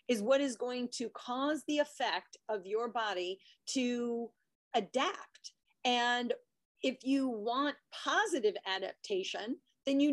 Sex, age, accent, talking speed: female, 40-59, American, 125 wpm